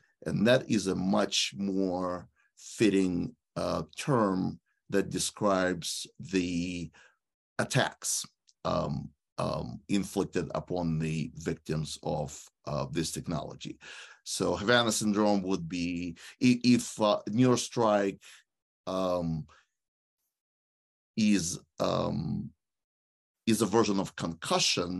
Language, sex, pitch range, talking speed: English, male, 90-105 Hz, 95 wpm